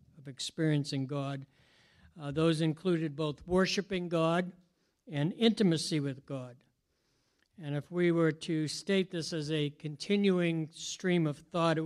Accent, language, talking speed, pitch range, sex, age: American, English, 130 wpm, 140-170 Hz, male, 60-79